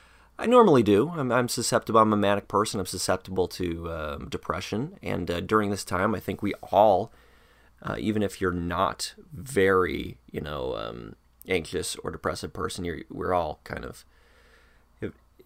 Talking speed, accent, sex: 170 wpm, American, male